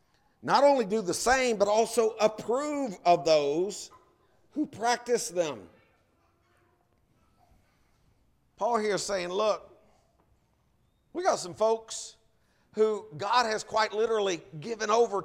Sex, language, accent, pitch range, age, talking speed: male, English, American, 145-210 Hz, 50-69, 110 wpm